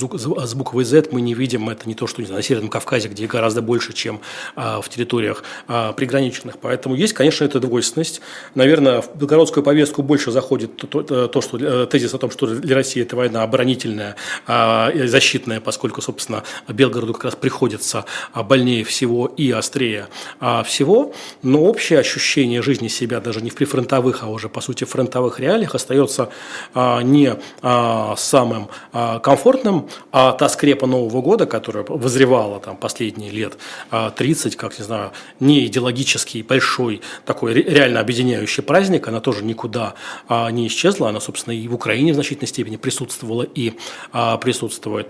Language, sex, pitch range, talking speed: Russian, male, 115-135 Hz, 150 wpm